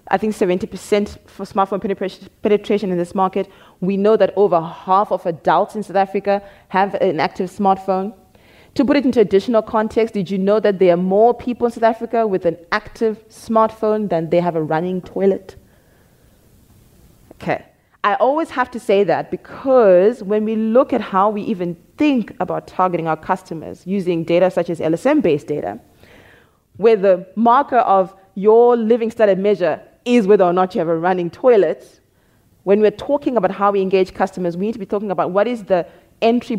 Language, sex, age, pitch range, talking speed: English, female, 20-39, 185-225 Hz, 180 wpm